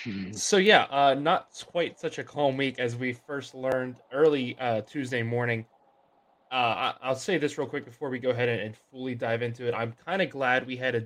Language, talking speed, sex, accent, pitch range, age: English, 215 wpm, male, American, 115-135 Hz, 20-39